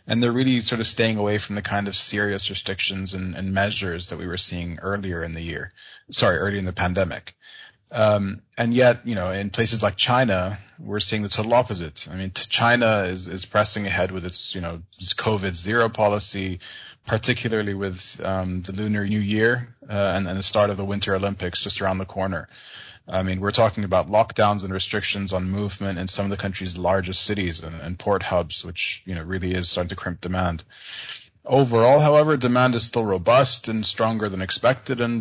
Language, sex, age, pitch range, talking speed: English, male, 30-49, 95-110 Hz, 205 wpm